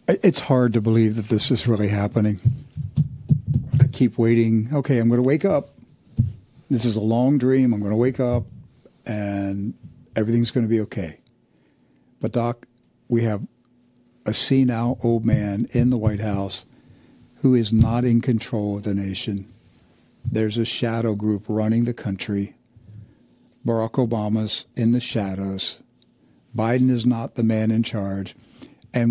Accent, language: American, English